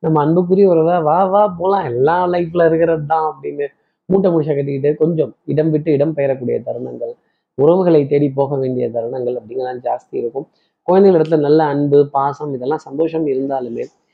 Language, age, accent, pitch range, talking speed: Tamil, 20-39, native, 135-165 Hz, 150 wpm